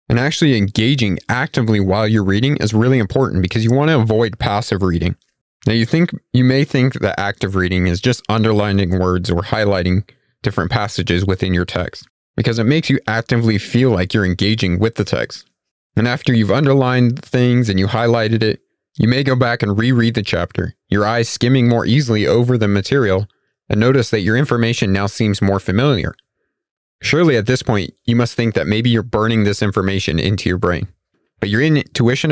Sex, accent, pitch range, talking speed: male, American, 100-125 Hz, 190 wpm